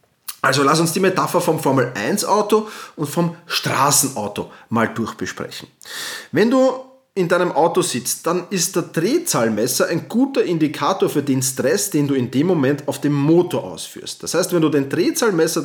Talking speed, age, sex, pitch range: 165 wpm, 30-49, male, 135-180 Hz